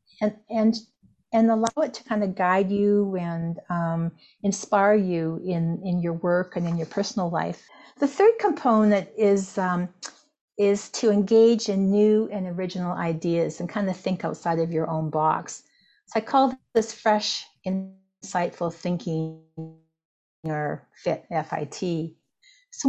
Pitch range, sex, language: 175-220 Hz, female, English